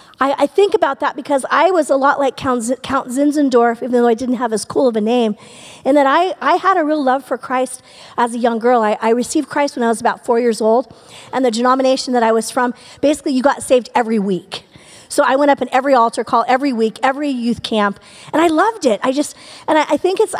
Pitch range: 235-290 Hz